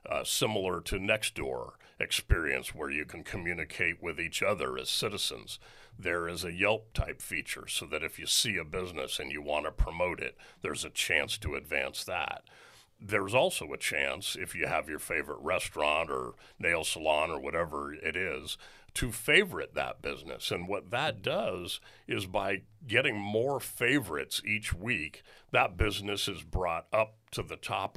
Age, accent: 50-69, American